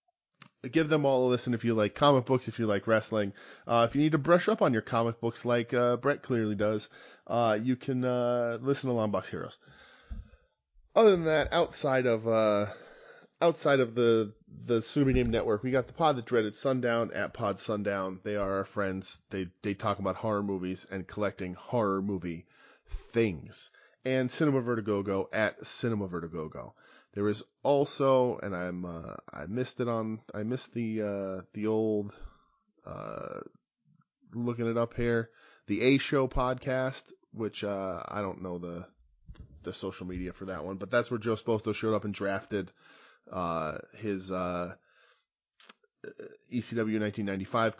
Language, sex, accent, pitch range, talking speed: English, male, American, 95-125 Hz, 165 wpm